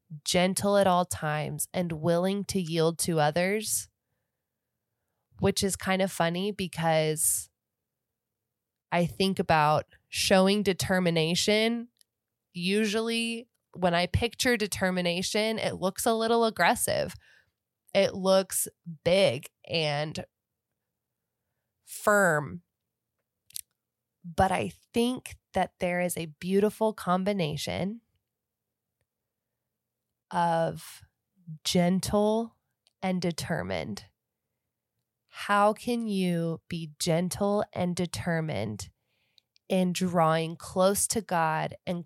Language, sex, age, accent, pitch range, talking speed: English, female, 20-39, American, 125-190 Hz, 90 wpm